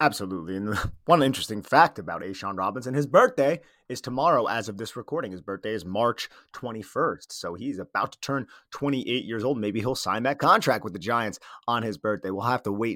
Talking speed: 210 wpm